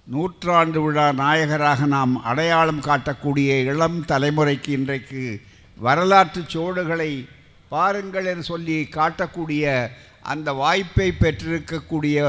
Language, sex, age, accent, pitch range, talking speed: Tamil, male, 60-79, native, 135-180 Hz, 90 wpm